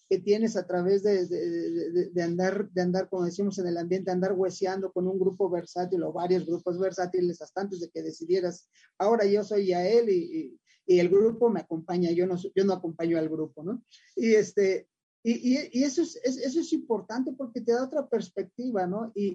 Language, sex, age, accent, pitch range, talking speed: English, male, 40-59, Mexican, 180-225 Hz, 215 wpm